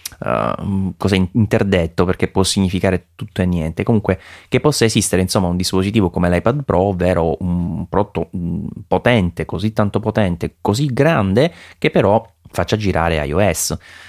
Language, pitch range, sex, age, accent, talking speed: Italian, 85-105 Hz, male, 30-49, native, 140 wpm